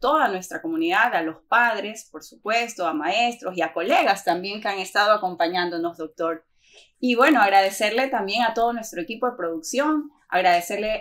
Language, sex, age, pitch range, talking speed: Spanish, female, 20-39, 195-275 Hz, 165 wpm